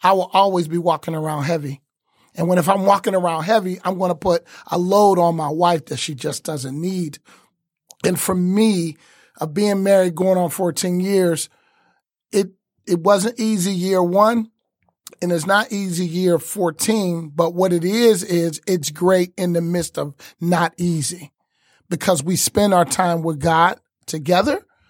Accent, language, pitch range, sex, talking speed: American, English, 170-200 Hz, male, 175 wpm